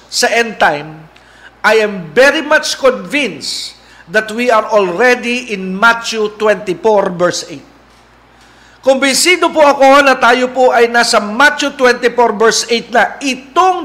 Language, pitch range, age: Filipino, 210-255 Hz, 50-69